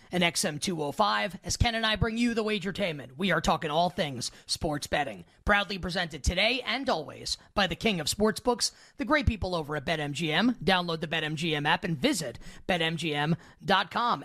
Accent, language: American, English